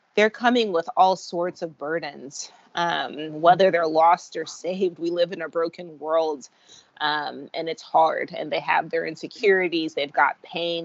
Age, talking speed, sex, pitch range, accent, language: 20-39, 170 wpm, female, 165-210 Hz, American, English